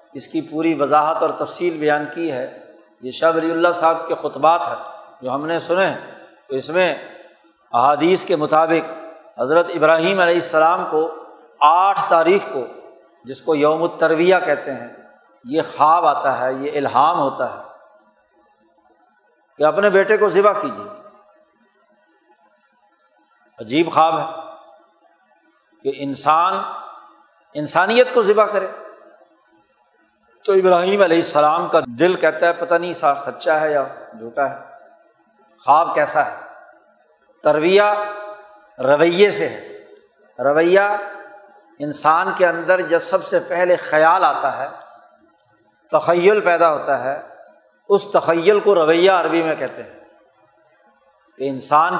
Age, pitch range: 60-79, 155-195 Hz